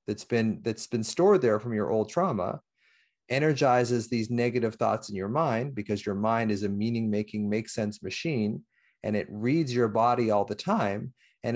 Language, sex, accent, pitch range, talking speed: English, male, American, 110-135 Hz, 185 wpm